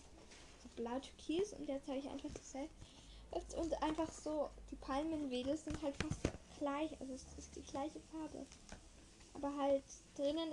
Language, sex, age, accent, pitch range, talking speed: English, female, 10-29, German, 250-300 Hz, 140 wpm